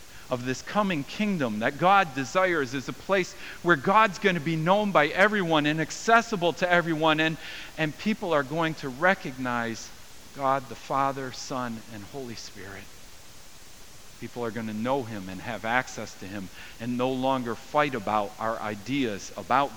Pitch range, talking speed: 115-170 Hz, 165 wpm